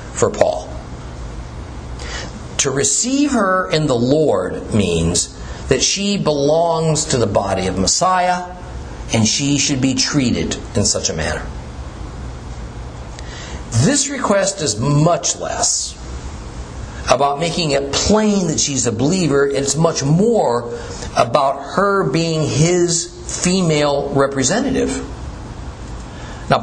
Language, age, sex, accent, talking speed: English, 50-69, male, American, 110 wpm